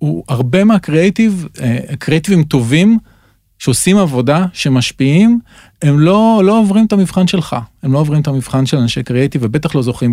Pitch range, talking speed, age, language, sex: 130-170 Hz, 140 wpm, 40-59, English, male